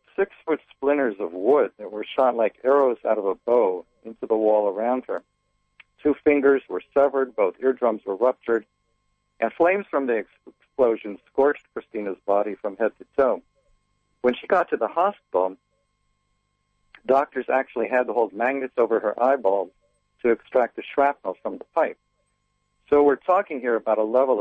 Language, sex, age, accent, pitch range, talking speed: English, male, 50-69, American, 110-145 Hz, 165 wpm